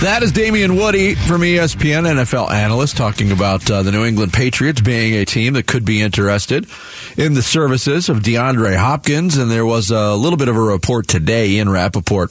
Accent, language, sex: American, English, male